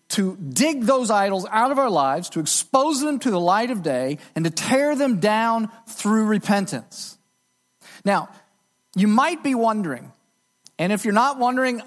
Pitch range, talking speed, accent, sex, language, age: 185-255 Hz, 165 wpm, American, male, English, 40-59